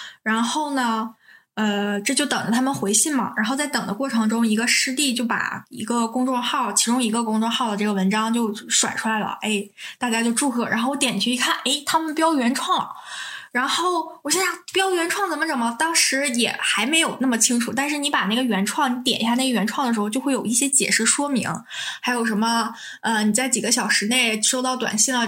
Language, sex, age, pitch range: Chinese, female, 20-39, 220-280 Hz